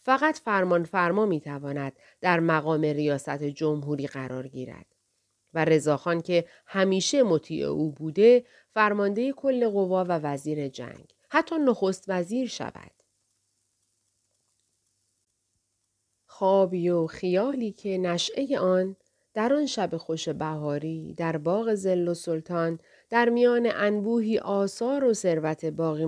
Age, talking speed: 40-59, 115 wpm